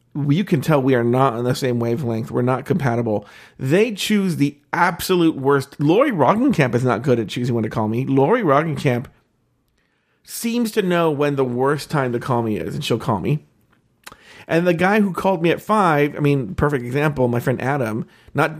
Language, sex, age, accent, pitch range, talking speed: English, male, 40-59, American, 125-175 Hz, 200 wpm